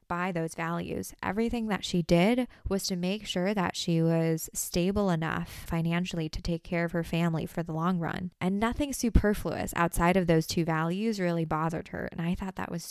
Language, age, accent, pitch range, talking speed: English, 20-39, American, 165-185 Hz, 200 wpm